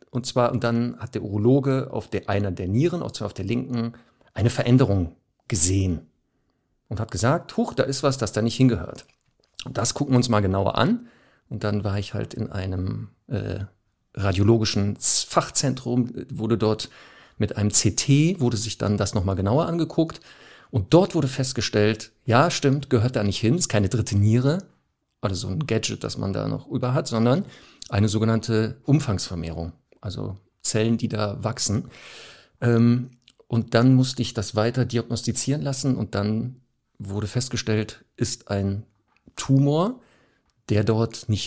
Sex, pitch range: male, 105-125 Hz